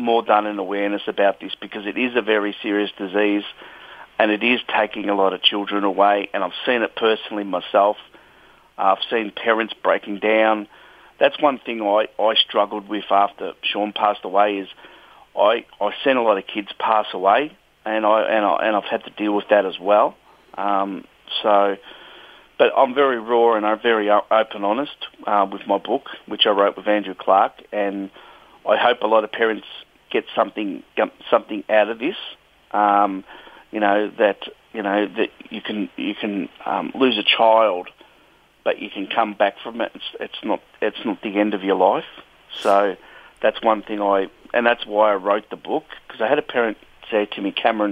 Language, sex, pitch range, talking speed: English, male, 100-110 Hz, 195 wpm